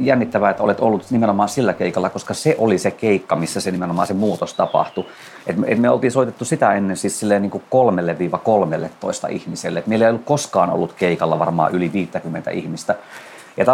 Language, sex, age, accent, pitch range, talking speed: Finnish, male, 30-49, native, 85-110 Hz, 185 wpm